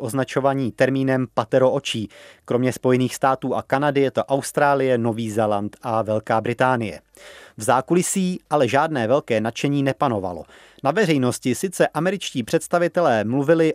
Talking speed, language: 125 wpm, Czech